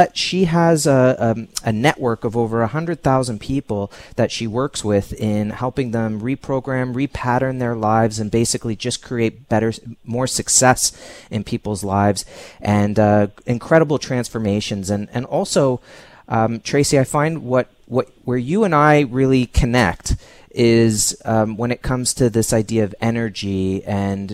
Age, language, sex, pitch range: 30-49, English, male, 105-130 Hz